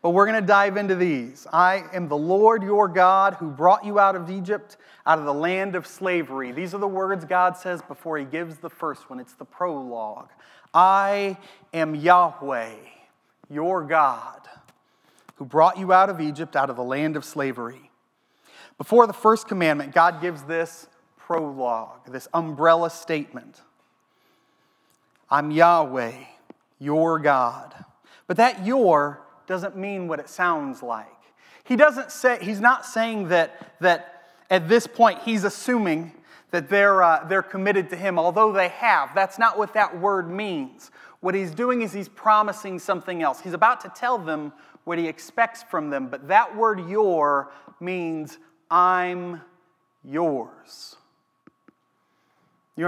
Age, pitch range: 30-49, 160-205 Hz